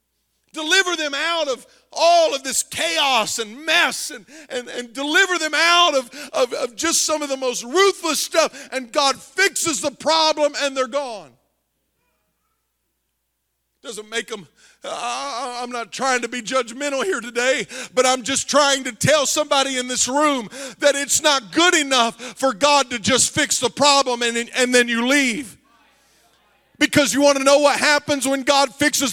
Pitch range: 260-300 Hz